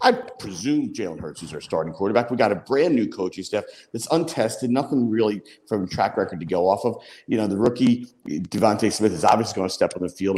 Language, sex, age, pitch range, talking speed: English, male, 50-69, 105-140 Hz, 225 wpm